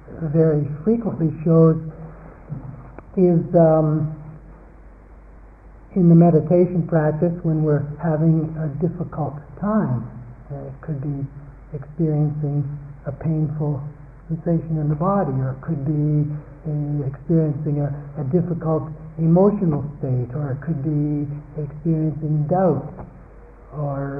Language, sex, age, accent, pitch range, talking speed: English, male, 50-69, American, 145-165 Hz, 105 wpm